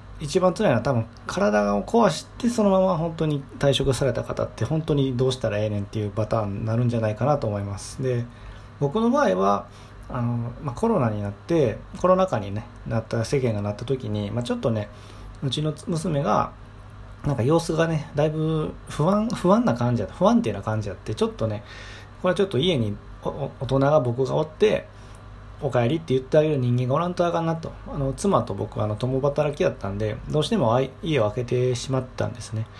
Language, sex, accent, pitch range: Japanese, male, native, 105-140 Hz